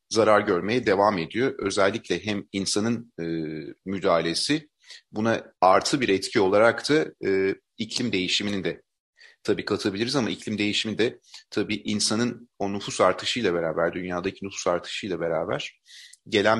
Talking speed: 130 wpm